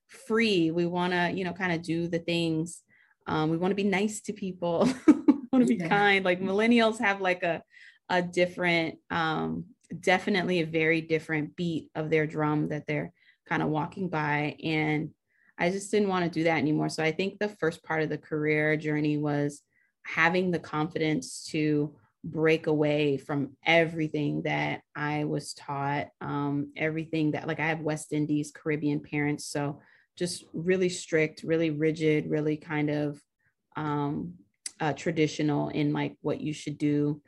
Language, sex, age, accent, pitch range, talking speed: English, female, 20-39, American, 150-180 Hz, 170 wpm